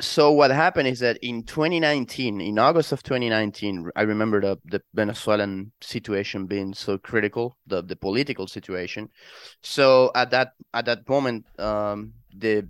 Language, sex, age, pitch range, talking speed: English, male, 20-39, 100-120 Hz, 150 wpm